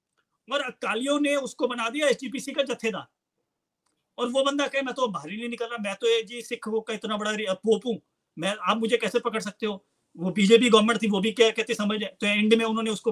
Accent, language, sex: Indian, English, male